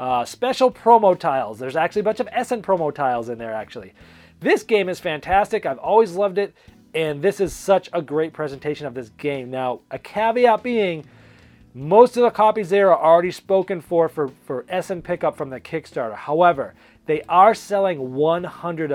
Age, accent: 30-49, American